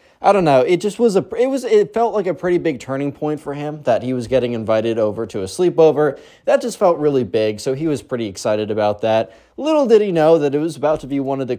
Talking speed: 275 wpm